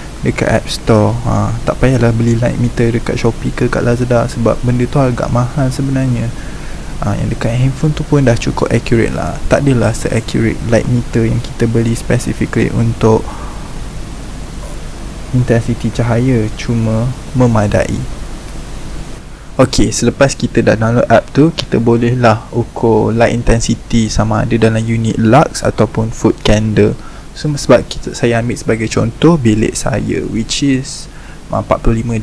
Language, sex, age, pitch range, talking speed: Malay, male, 20-39, 115-130 Hz, 140 wpm